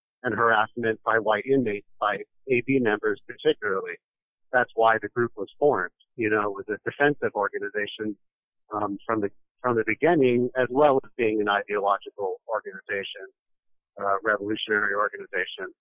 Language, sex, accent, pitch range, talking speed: English, male, American, 110-140 Hz, 145 wpm